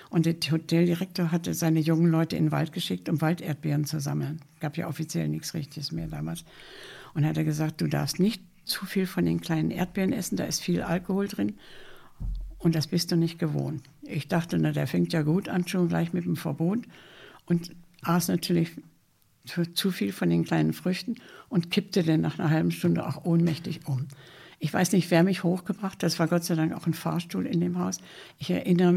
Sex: female